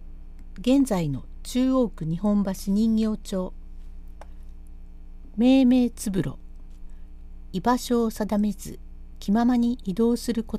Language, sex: Japanese, female